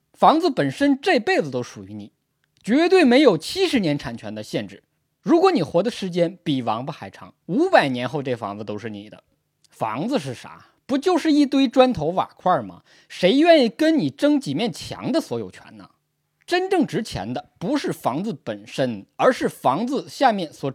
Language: Chinese